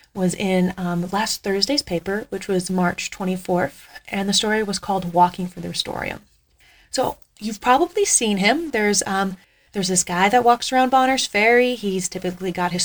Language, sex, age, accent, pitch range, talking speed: English, female, 30-49, American, 180-235 Hz, 175 wpm